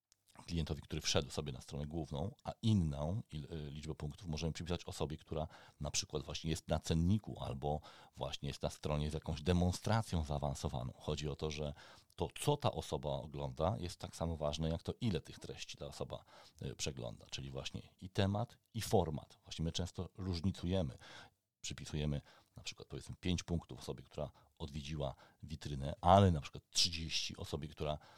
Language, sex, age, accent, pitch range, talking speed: Polish, male, 40-59, native, 75-95 Hz, 165 wpm